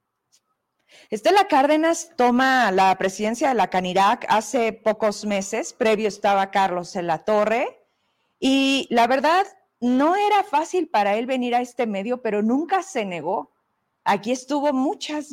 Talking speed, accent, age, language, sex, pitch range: 140 wpm, Mexican, 40-59, Spanish, female, 215-275 Hz